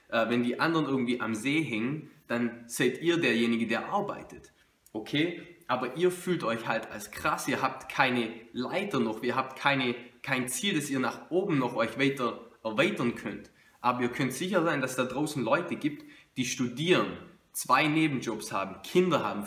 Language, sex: German, male